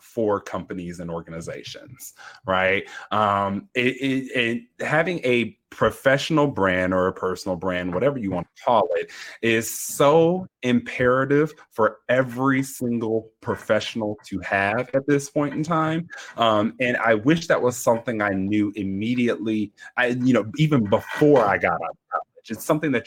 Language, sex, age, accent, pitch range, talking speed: English, male, 30-49, American, 105-145 Hz, 150 wpm